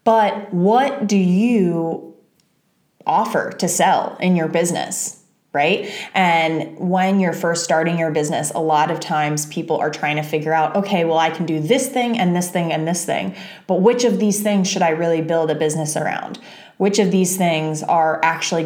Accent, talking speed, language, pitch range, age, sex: American, 190 wpm, English, 165-215 Hz, 20-39, female